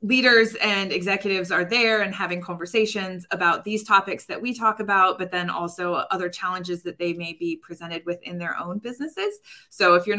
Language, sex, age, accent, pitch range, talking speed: English, female, 20-39, American, 180-210 Hz, 195 wpm